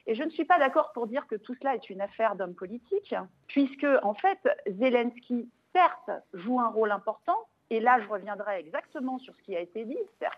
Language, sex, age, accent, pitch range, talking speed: French, female, 50-69, French, 210-290 Hz, 215 wpm